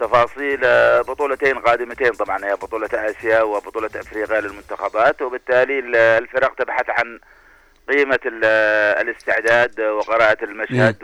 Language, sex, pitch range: Arabic, male, 105-125 Hz